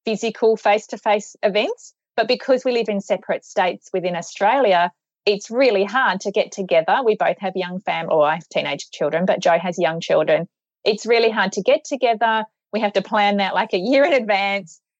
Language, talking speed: English, 210 wpm